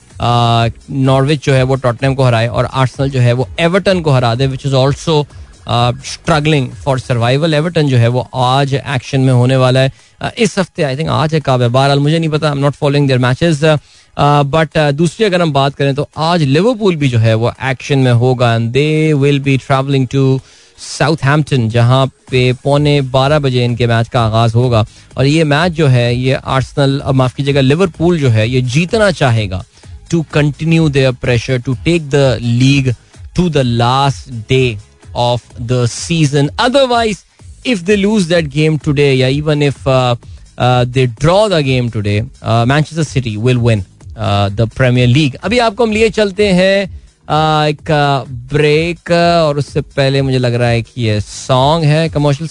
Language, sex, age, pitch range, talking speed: Hindi, male, 20-39, 125-155 Hz, 185 wpm